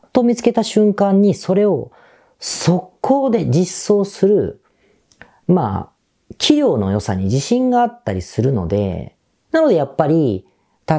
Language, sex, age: Japanese, female, 40-59